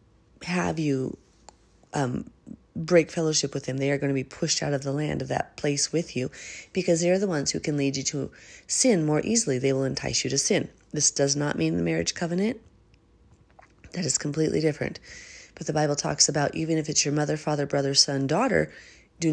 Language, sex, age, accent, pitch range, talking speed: English, female, 30-49, American, 140-180 Hz, 205 wpm